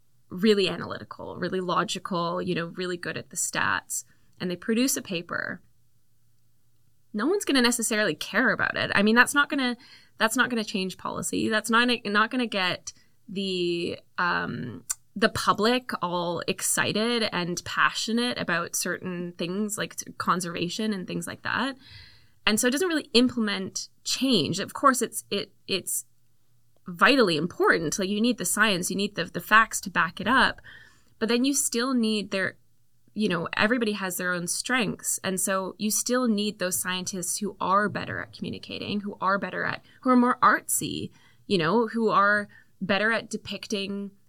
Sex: female